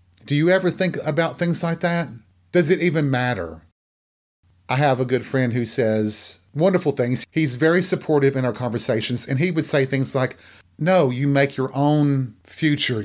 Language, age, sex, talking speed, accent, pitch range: English, 40-59, male, 180 wpm, American, 110-145 Hz